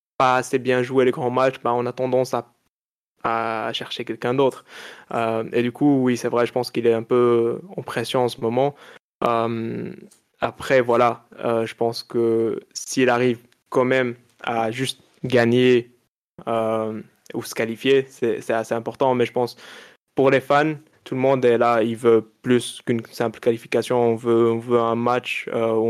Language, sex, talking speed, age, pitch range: French, male, 185 wpm, 20-39, 115-130 Hz